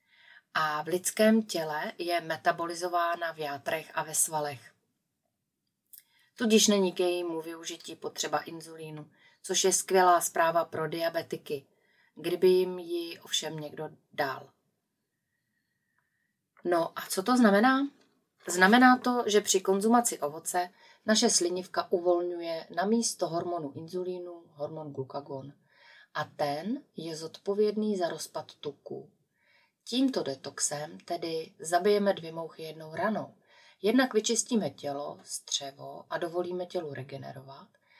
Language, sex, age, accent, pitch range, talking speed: Czech, female, 30-49, native, 155-200 Hz, 115 wpm